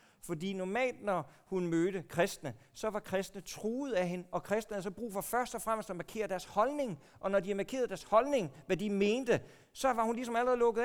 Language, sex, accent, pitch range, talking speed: Danish, male, native, 155-215 Hz, 220 wpm